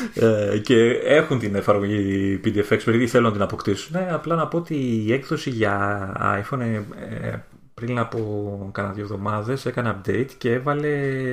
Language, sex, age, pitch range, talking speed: Greek, male, 30-49, 100-130 Hz, 145 wpm